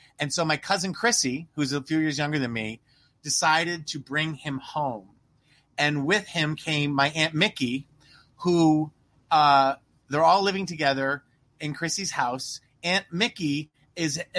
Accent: American